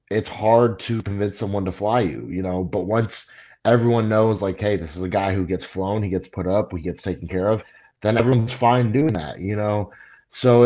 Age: 30-49